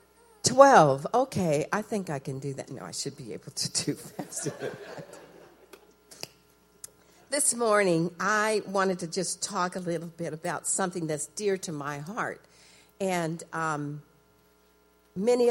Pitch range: 150-205 Hz